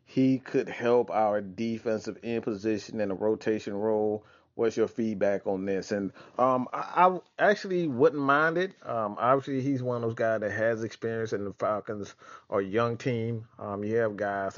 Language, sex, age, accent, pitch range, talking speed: English, male, 30-49, American, 100-115 Hz, 180 wpm